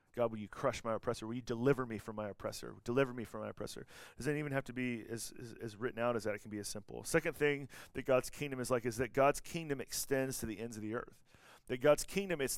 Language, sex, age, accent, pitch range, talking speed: English, male, 40-59, American, 120-145 Hz, 270 wpm